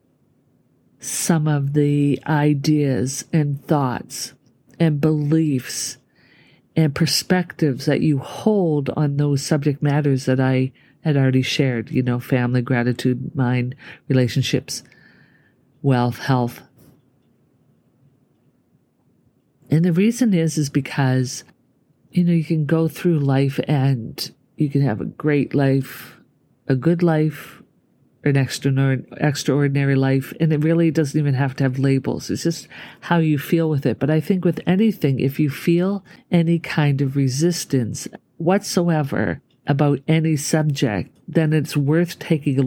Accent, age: American, 50-69